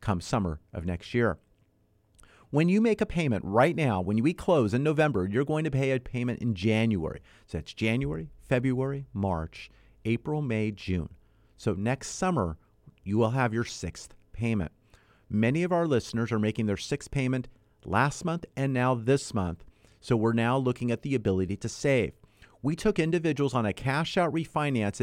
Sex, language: male, English